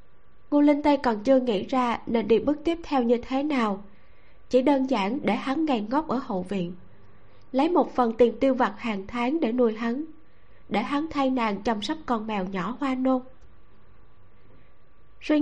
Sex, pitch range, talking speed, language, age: female, 210-270 Hz, 185 wpm, Vietnamese, 20-39